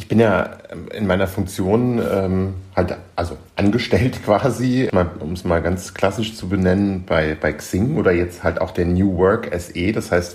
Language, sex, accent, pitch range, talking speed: German, male, German, 95-115 Hz, 180 wpm